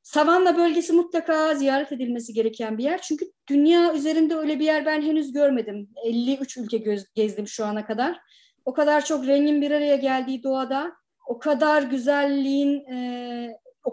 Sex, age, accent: female, 30-49, native